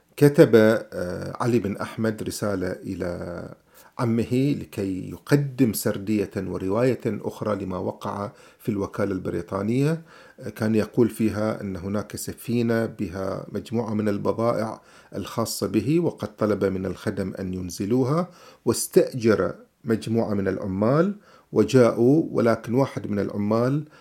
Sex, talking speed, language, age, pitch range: male, 110 wpm, Arabic, 40-59, 100-125 Hz